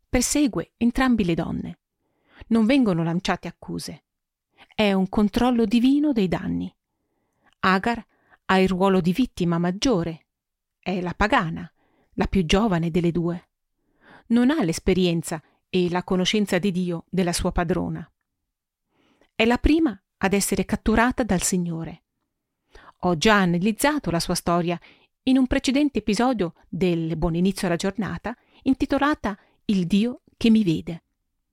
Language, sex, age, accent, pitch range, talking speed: Italian, female, 40-59, native, 175-230 Hz, 130 wpm